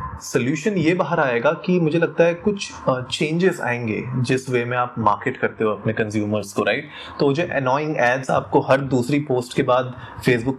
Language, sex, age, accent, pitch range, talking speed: Hindi, male, 20-39, native, 120-155 Hz, 195 wpm